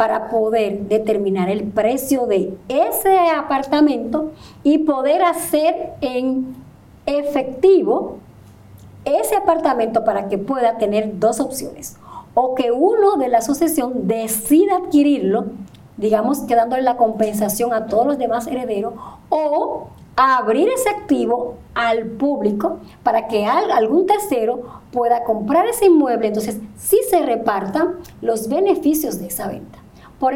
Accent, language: American, Spanish